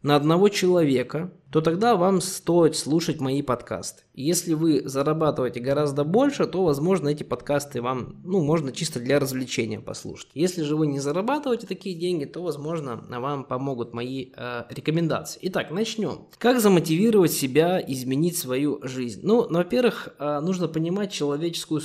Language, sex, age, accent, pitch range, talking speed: Russian, male, 20-39, native, 140-185 Hz, 150 wpm